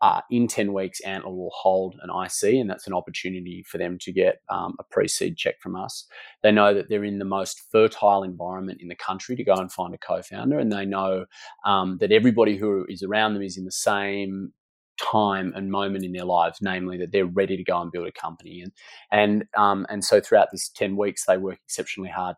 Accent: Australian